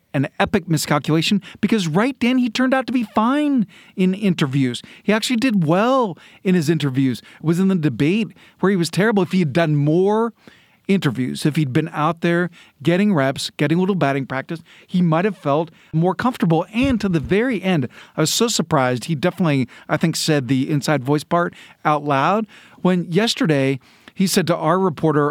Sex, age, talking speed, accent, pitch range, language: male, 40-59, 190 wpm, American, 145-190 Hz, English